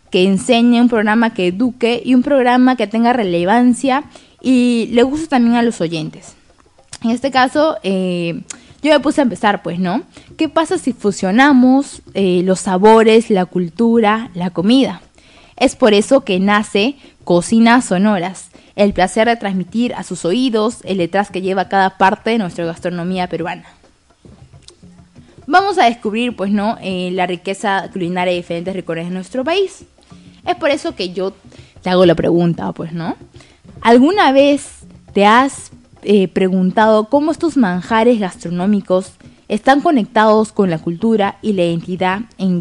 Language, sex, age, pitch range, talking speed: Spanish, female, 20-39, 185-255 Hz, 155 wpm